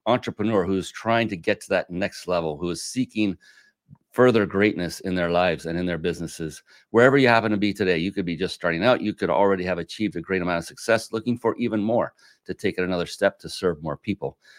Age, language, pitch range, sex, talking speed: 40-59, English, 90-115 Hz, male, 230 wpm